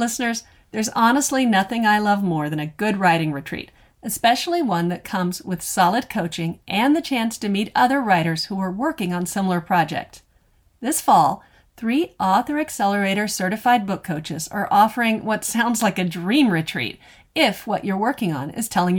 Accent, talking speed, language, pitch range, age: American, 175 wpm, English, 175-235 Hz, 50-69